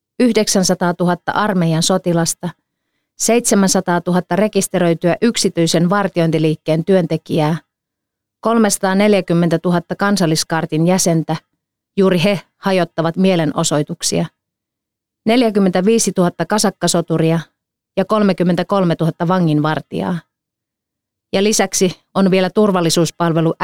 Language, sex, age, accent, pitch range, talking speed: Finnish, female, 30-49, native, 165-195 Hz, 75 wpm